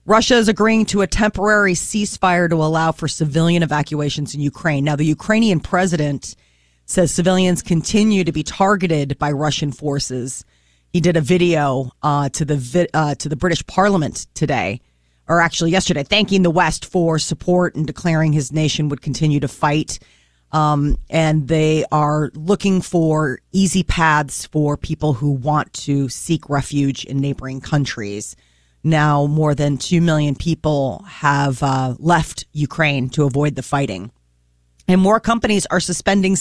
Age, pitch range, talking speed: 30-49, 140-180 Hz, 155 wpm